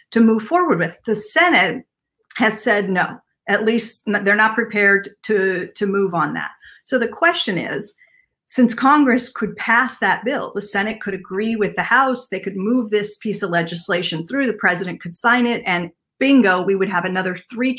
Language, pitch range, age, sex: English, 190-240 Hz, 50-69, female